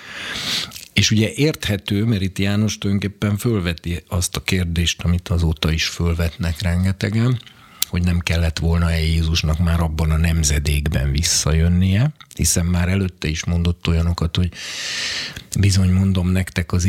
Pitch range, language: 80-95 Hz, Hungarian